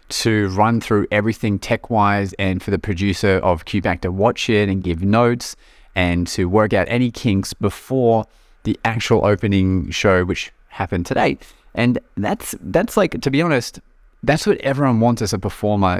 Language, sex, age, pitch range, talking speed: English, male, 30-49, 95-115 Hz, 175 wpm